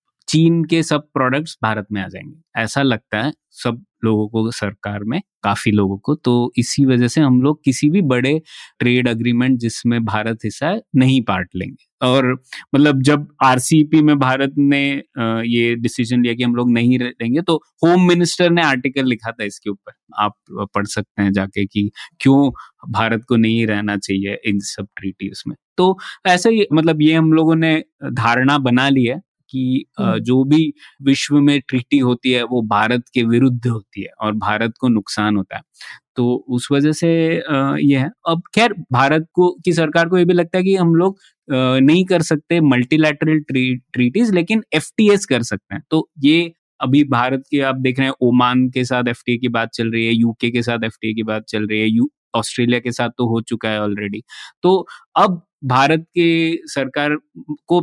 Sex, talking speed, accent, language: male, 185 wpm, native, Hindi